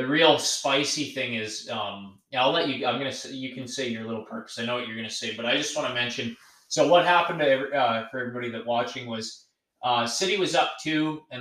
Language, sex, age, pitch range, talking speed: English, male, 20-39, 115-135 Hz, 260 wpm